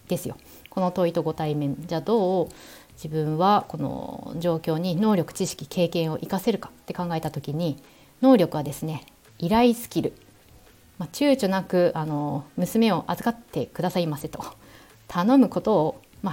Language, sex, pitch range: Japanese, female, 160-215 Hz